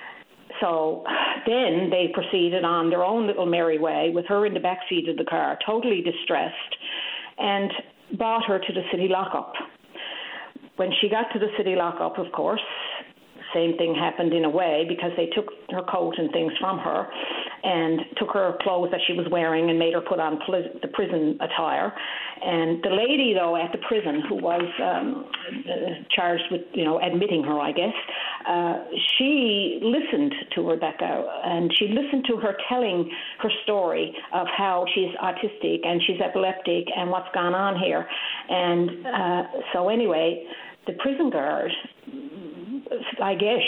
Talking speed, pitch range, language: 165 wpm, 165-210 Hz, English